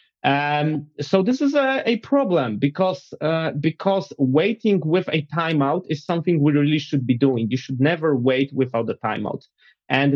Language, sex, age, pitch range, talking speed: English, male, 30-49, 125-155 Hz, 170 wpm